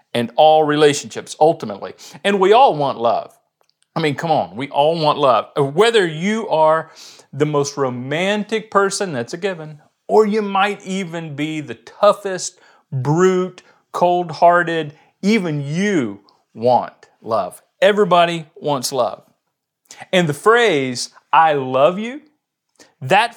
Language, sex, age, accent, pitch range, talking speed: English, male, 40-59, American, 120-175 Hz, 130 wpm